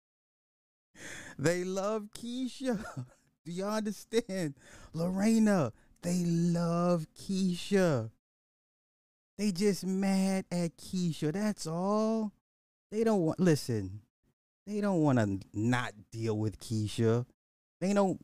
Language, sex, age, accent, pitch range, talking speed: English, male, 30-49, American, 110-165 Hz, 100 wpm